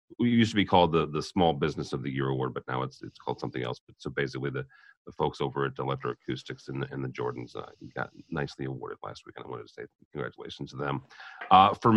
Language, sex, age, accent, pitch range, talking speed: English, male, 40-59, American, 70-95 Hz, 255 wpm